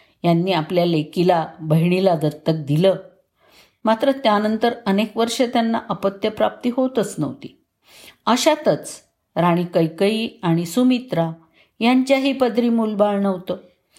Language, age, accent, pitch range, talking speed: Marathi, 50-69, native, 165-215 Hz, 100 wpm